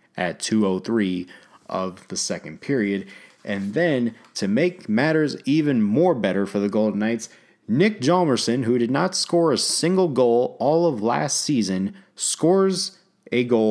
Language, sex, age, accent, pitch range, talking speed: English, male, 30-49, American, 95-115 Hz, 150 wpm